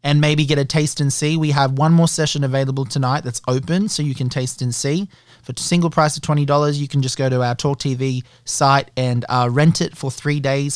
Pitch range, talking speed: 130-155 Hz, 245 wpm